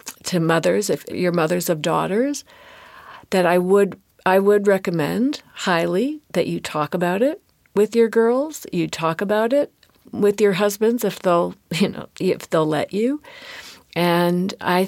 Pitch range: 165-205 Hz